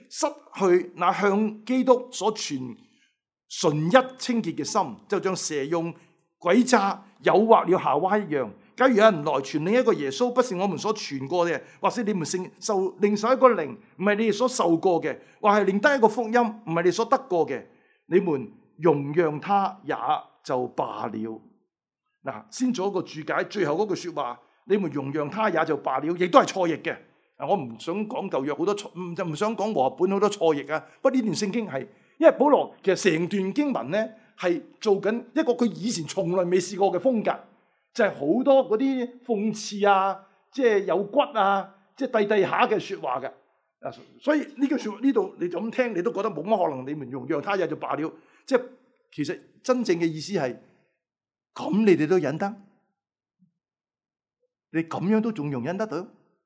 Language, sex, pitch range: Chinese, male, 170-235 Hz